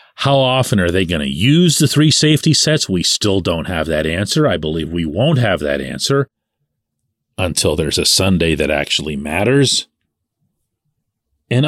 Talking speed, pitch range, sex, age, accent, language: 165 wpm, 105-165 Hz, male, 40-59, American, English